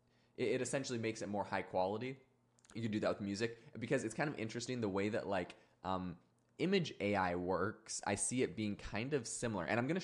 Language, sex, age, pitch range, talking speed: English, male, 20-39, 95-120 Hz, 220 wpm